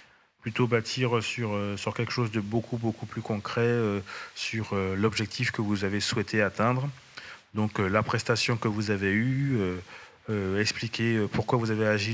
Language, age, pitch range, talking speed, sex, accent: French, 30-49, 105-120 Hz, 175 wpm, male, French